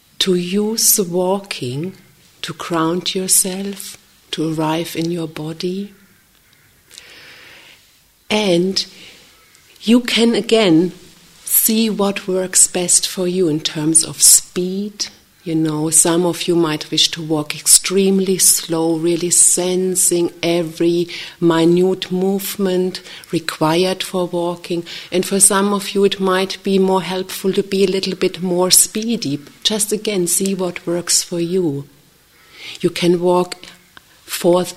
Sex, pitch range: female, 160-190 Hz